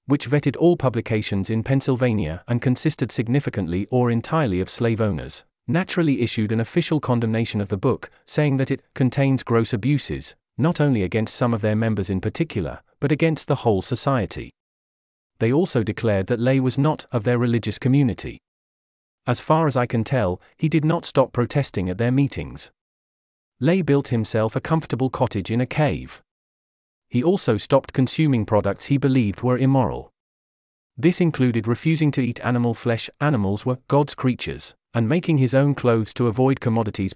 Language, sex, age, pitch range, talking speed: English, male, 40-59, 110-140 Hz, 170 wpm